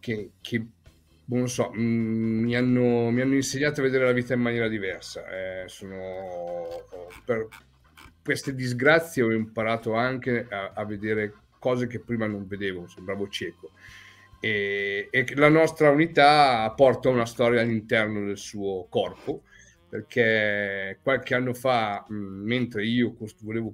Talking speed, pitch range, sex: 130 wpm, 100-120 Hz, male